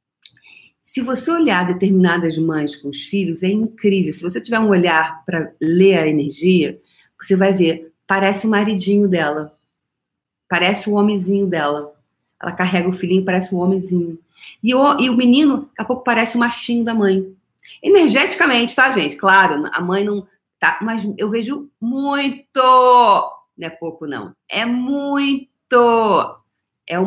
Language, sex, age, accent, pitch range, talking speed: Portuguese, female, 40-59, Brazilian, 185-260 Hz, 155 wpm